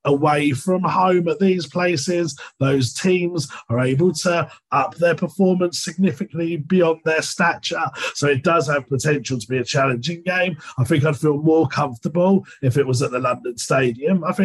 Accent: British